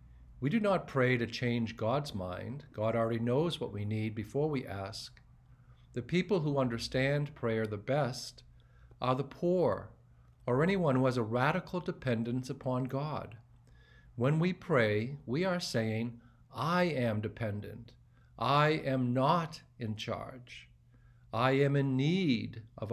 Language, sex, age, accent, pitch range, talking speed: English, male, 50-69, American, 115-135 Hz, 145 wpm